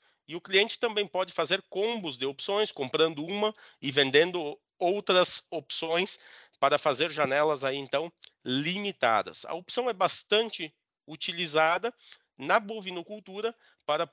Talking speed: 125 wpm